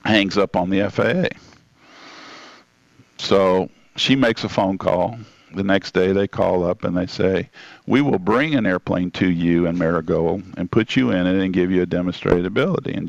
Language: English